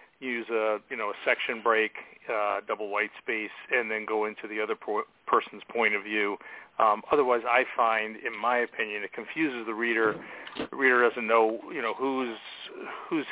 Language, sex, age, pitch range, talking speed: English, male, 40-59, 110-120 Hz, 185 wpm